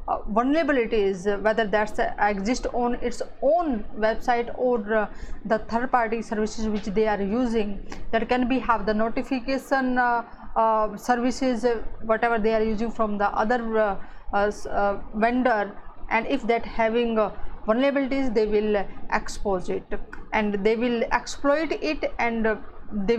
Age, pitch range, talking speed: 20-39, 215-255 Hz, 145 wpm